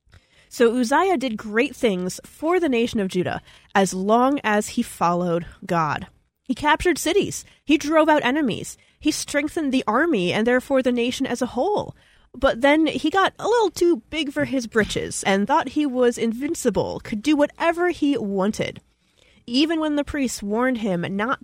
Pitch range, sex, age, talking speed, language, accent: 210-295 Hz, female, 20-39, 175 wpm, English, American